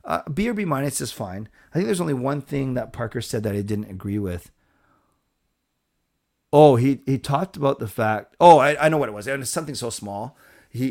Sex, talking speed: male, 225 wpm